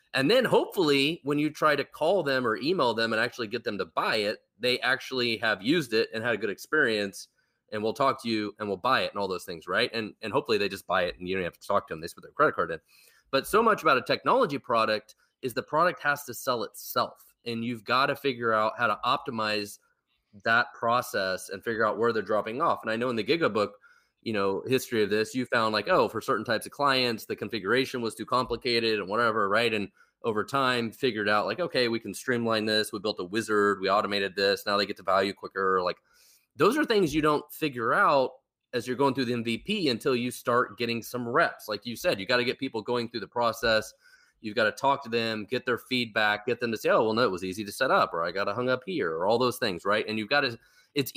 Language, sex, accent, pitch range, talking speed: English, male, American, 110-140 Hz, 260 wpm